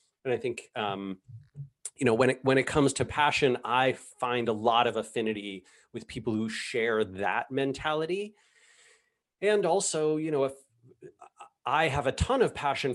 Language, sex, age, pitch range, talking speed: English, male, 30-49, 115-155 Hz, 165 wpm